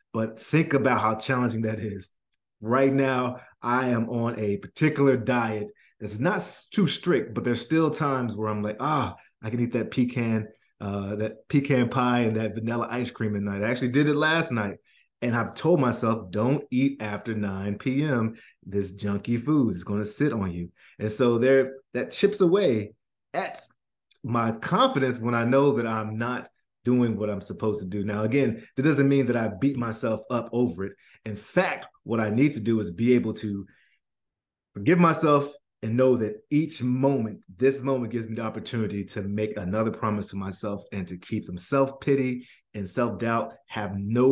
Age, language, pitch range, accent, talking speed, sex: 30-49, English, 105-130 Hz, American, 190 wpm, male